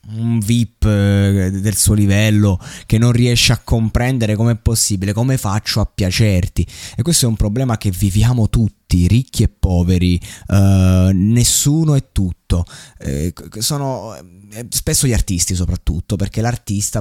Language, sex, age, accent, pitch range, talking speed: Italian, male, 20-39, native, 100-120 Hz, 145 wpm